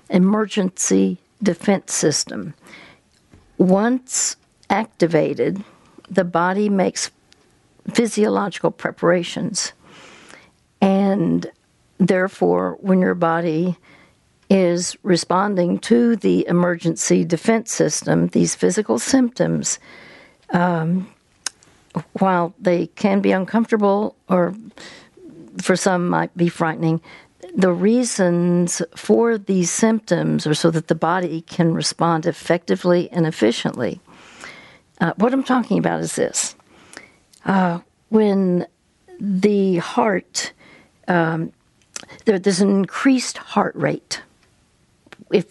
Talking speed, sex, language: 95 wpm, female, English